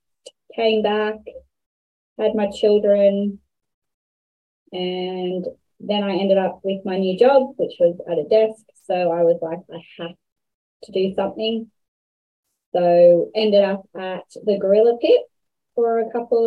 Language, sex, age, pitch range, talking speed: English, female, 20-39, 185-215 Hz, 140 wpm